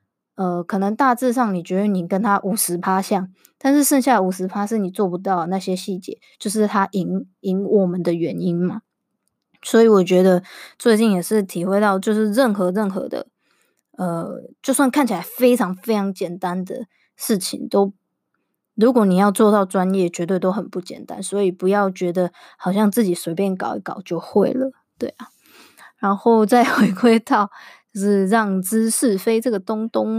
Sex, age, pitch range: female, 20-39, 185-225 Hz